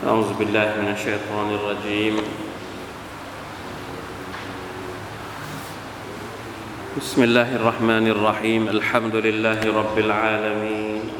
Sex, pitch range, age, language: male, 105-110 Hz, 20-39, Thai